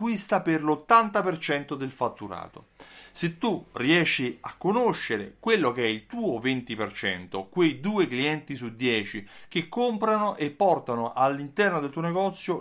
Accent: native